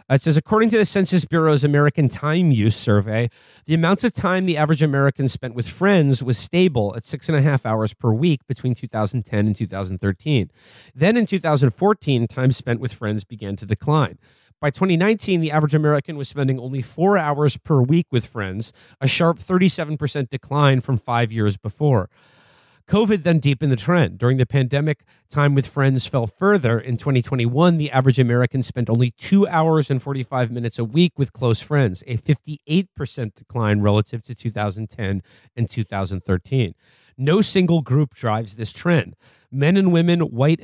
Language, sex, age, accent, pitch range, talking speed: English, male, 40-59, American, 115-150 Hz, 170 wpm